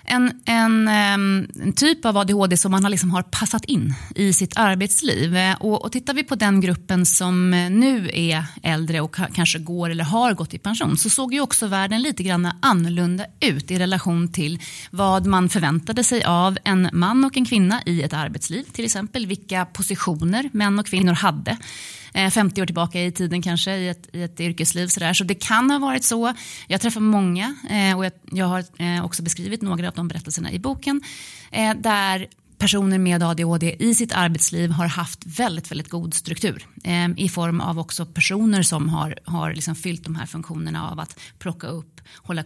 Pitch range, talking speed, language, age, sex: 165-200 Hz, 185 wpm, Swedish, 30-49, female